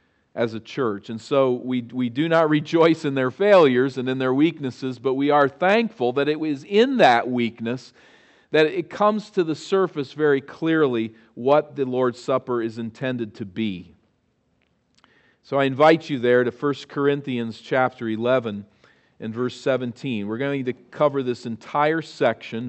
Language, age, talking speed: English, 40-59, 170 wpm